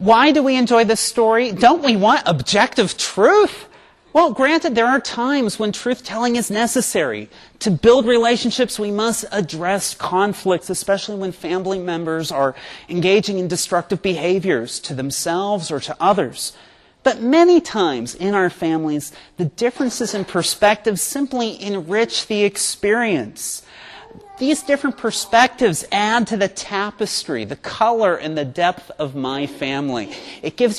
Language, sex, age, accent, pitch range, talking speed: English, male, 30-49, American, 170-235 Hz, 140 wpm